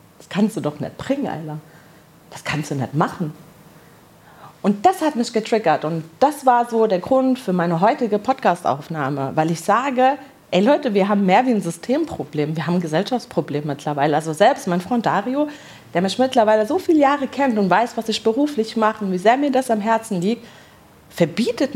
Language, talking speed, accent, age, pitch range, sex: German, 195 wpm, German, 40-59, 170-255 Hz, female